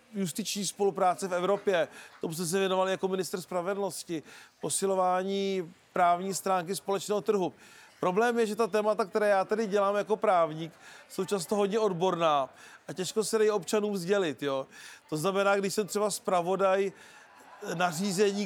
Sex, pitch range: male, 185-205 Hz